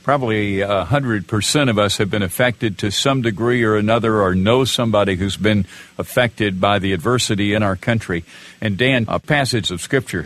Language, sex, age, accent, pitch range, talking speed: English, male, 50-69, American, 95-120 Hz, 180 wpm